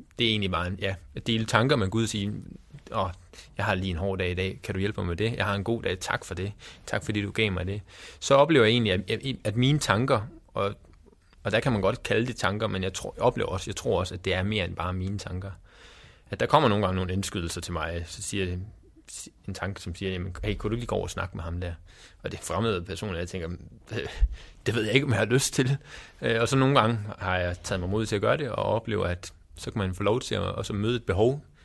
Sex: male